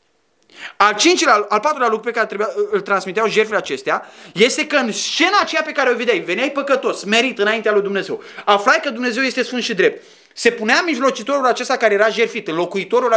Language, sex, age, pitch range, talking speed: Romanian, male, 30-49, 190-255 Hz, 190 wpm